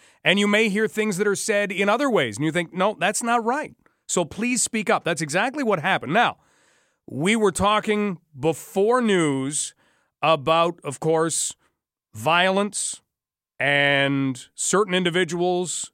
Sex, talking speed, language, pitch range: male, 145 wpm, English, 160-200 Hz